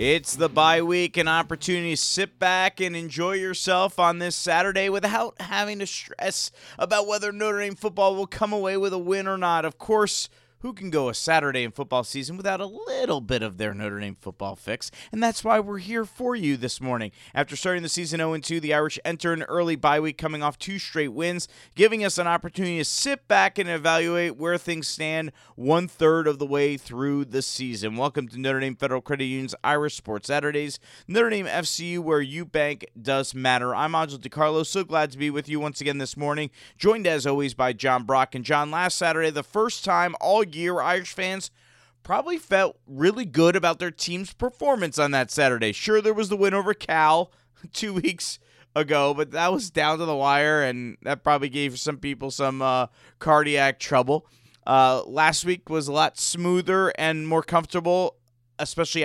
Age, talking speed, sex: 30-49, 200 wpm, male